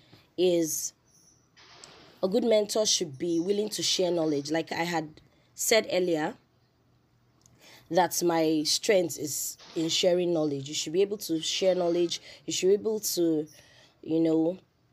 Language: English